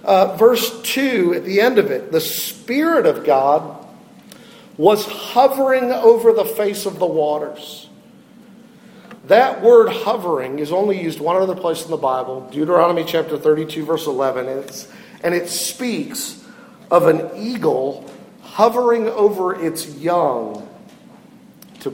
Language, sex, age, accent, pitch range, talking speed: English, male, 50-69, American, 160-235 Hz, 135 wpm